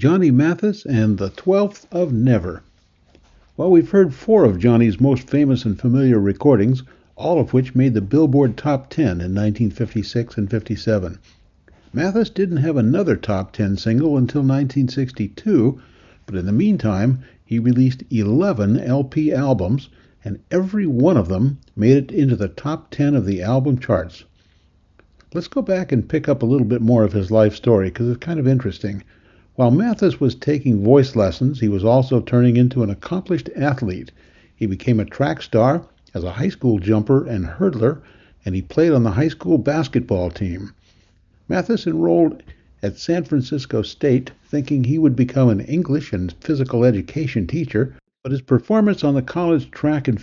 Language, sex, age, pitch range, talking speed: English, male, 60-79, 105-145 Hz, 170 wpm